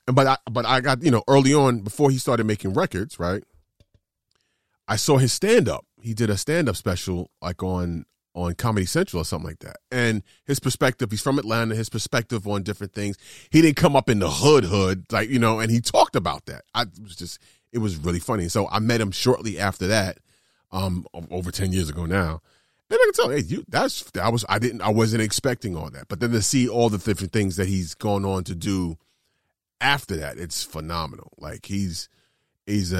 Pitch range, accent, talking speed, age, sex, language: 90-115 Hz, American, 210 wpm, 30-49, male, English